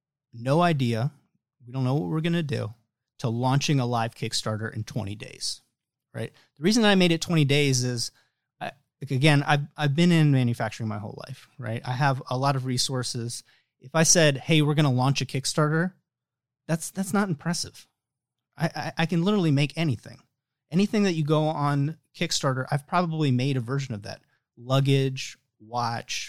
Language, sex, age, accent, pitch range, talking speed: English, male, 30-49, American, 125-155 Hz, 185 wpm